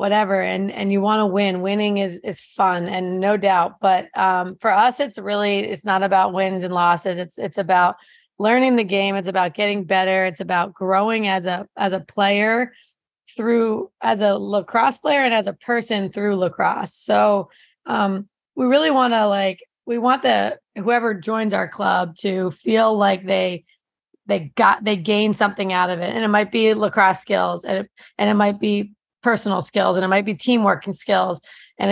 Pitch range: 190-220 Hz